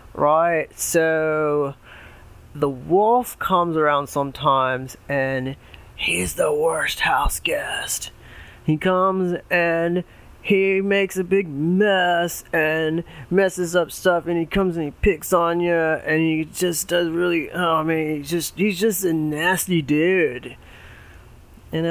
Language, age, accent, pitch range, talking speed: English, 30-49, American, 140-190 Hz, 130 wpm